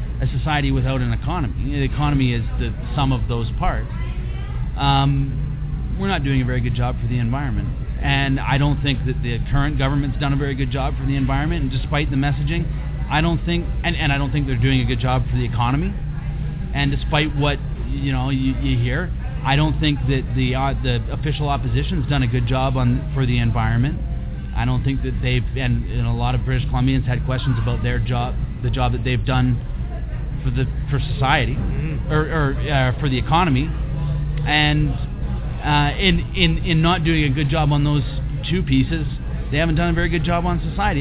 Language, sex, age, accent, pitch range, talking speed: English, male, 30-49, American, 125-150 Hz, 205 wpm